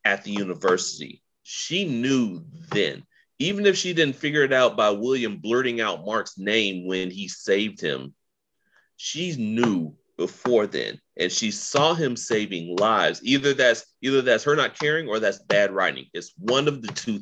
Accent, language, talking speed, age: American, English, 170 wpm, 30-49